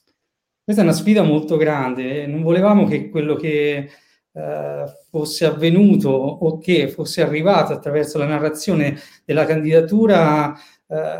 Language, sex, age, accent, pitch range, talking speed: Italian, male, 40-59, native, 145-180 Hz, 125 wpm